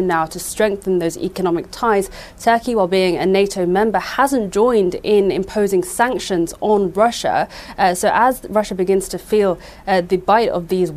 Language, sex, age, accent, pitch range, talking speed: English, female, 30-49, British, 175-200 Hz, 170 wpm